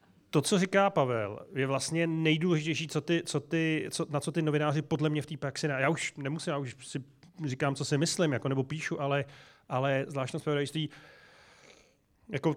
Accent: native